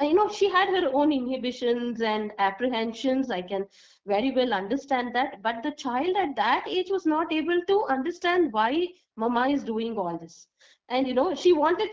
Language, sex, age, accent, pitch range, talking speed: English, female, 20-39, Indian, 230-325 Hz, 185 wpm